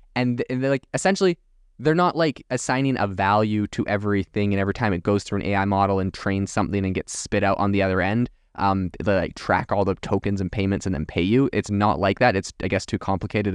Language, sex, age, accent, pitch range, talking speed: English, male, 20-39, American, 95-120 Hz, 235 wpm